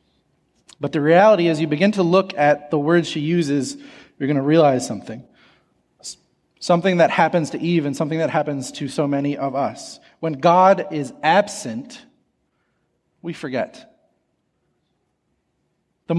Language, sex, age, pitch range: English, male, 30-49, 145-190 Hz